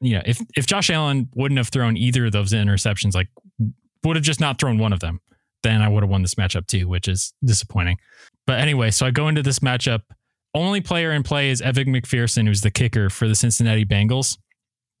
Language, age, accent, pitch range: English, 20-39, American, 115-155 Hz